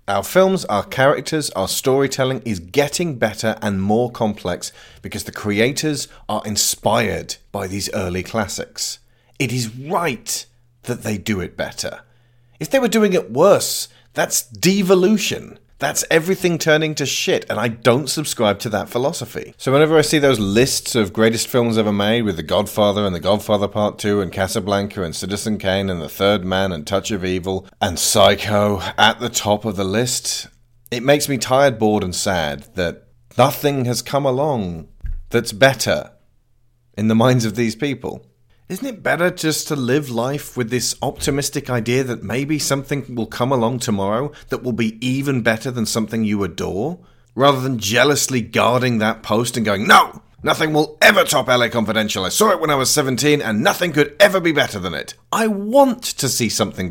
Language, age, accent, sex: English, 30-49, British, male